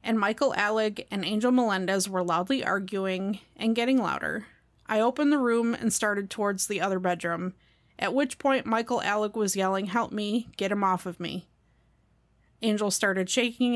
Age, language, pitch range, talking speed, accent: 30-49, English, 185-235 Hz, 170 wpm, American